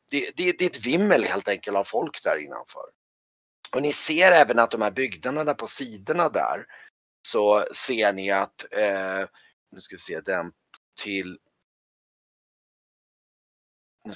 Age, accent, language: 30-49, native, Swedish